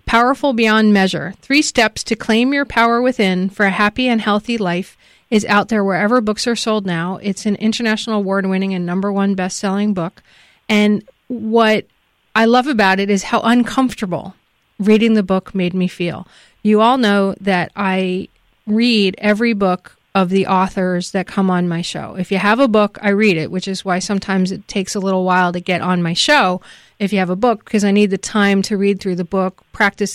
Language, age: English, 30-49